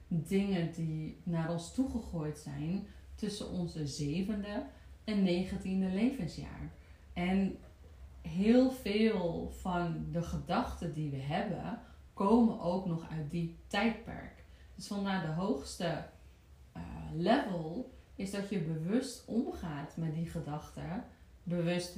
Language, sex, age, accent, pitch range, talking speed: Dutch, female, 30-49, Dutch, 155-195 Hz, 115 wpm